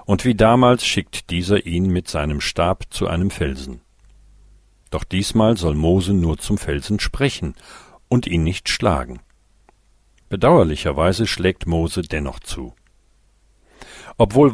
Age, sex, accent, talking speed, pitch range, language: 50-69, male, German, 125 wpm, 80-100 Hz, German